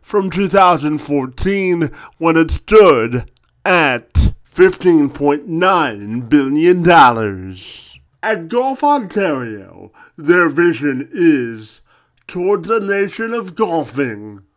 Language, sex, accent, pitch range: English, male, American, 120-190 Hz